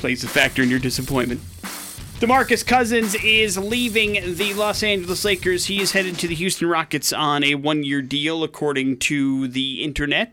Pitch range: 140-185 Hz